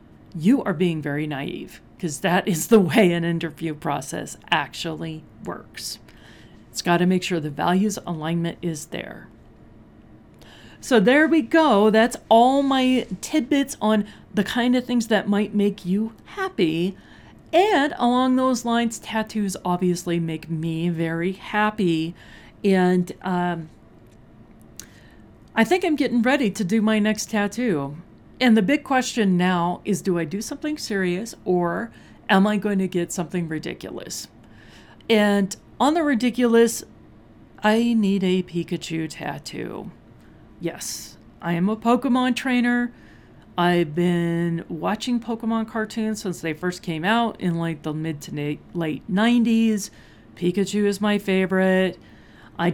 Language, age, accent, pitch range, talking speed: English, 40-59, American, 170-225 Hz, 140 wpm